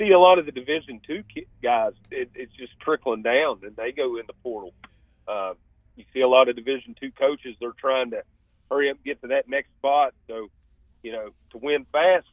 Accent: American